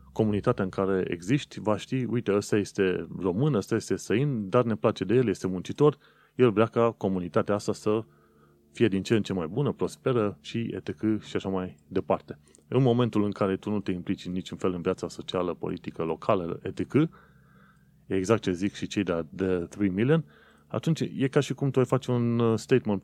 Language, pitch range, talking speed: Romanian, 95-120 Hz, 200 wpm